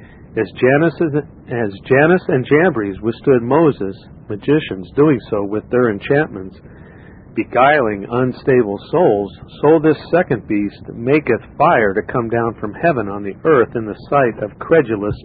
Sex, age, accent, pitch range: male, 50-69, American, 105-140 Hz